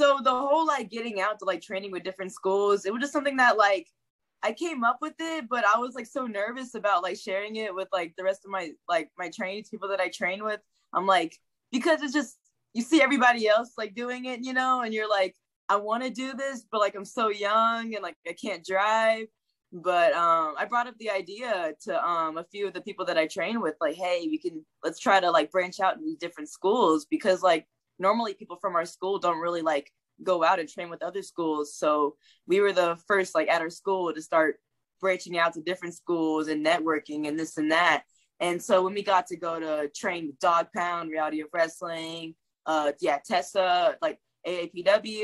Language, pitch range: English, 170-225 Hz